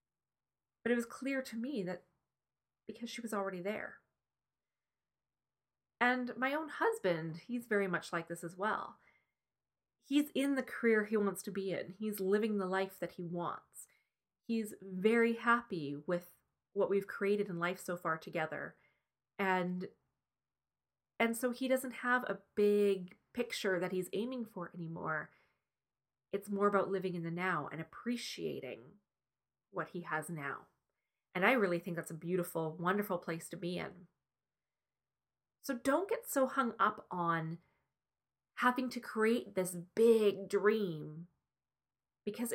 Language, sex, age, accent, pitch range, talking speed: English, female, 30-49, American, 180-235 Hz, 145 wpm